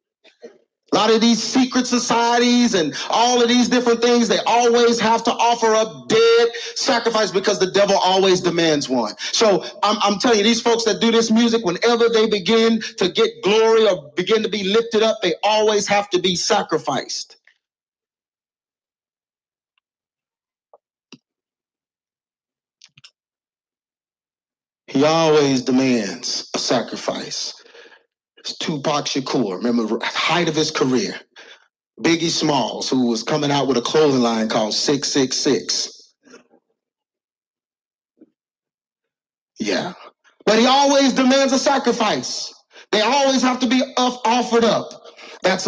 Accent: American